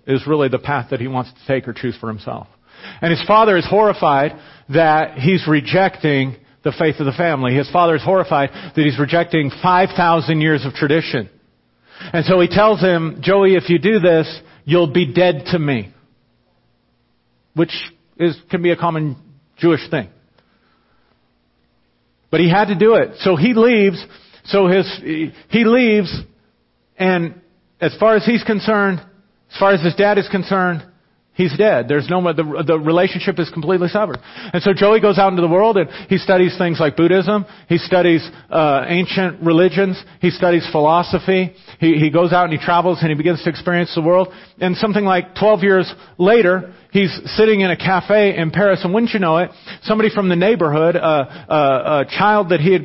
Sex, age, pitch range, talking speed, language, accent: male, 50-69, 155-190 Hz, 185 wpm, English, American